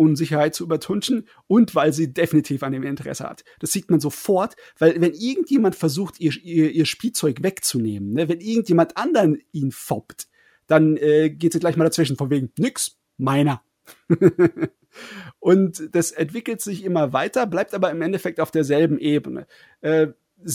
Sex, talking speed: male, 160 wpm